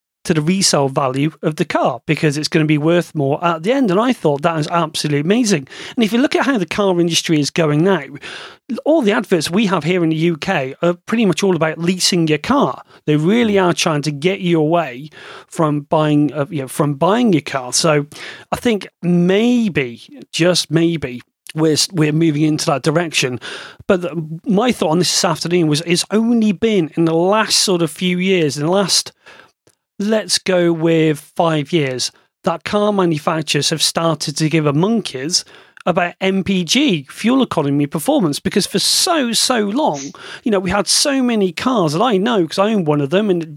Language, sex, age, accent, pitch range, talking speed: English, male, 30-49, British, 155-195 Hz, 200 wpm